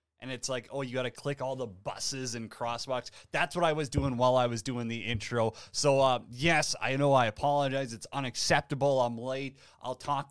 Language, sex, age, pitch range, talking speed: English, male, 20-39, 120-160 Hz, 215 wpm